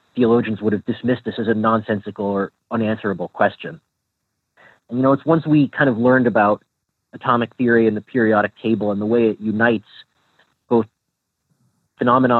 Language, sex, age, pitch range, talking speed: English, male, 30-49, 105-120 Hz, 165 wpm